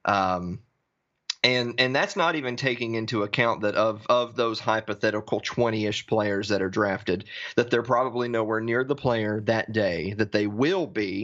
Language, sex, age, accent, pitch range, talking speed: English, male, 30-49, American, 105-125 Hz, 175 wpm